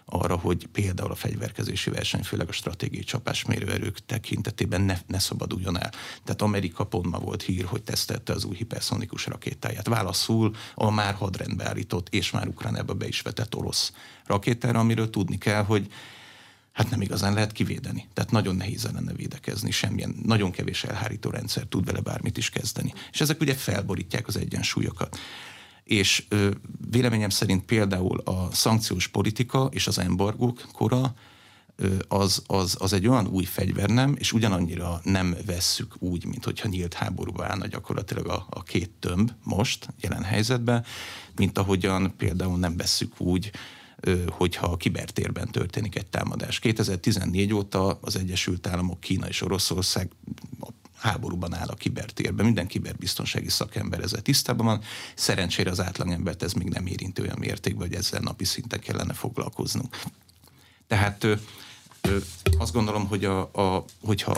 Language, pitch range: Hungarian, 95-115 Hz